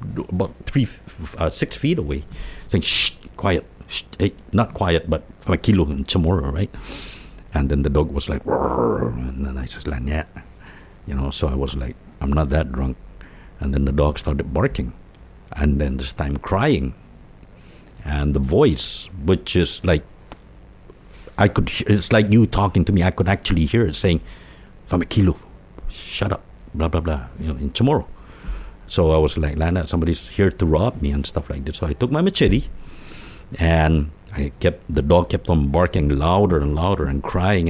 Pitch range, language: 75-95 Hz, English